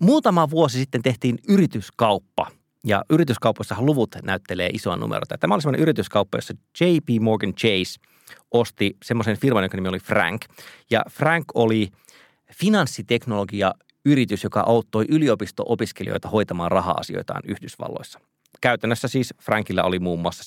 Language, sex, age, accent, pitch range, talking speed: Finnish, male, 30-49, native, 105-140 Hz, 125 wpm